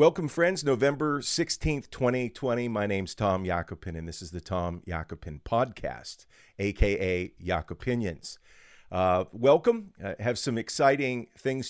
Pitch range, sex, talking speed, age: 90-115 Hz, male, 125 wpm, 50-69